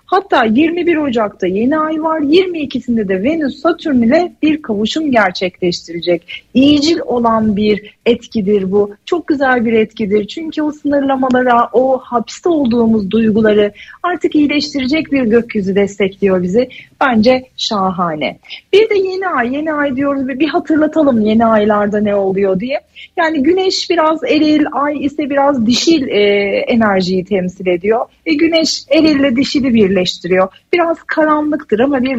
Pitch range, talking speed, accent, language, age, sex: 220-315 Hz, 140 wpm, native, Turkish, 40-59, female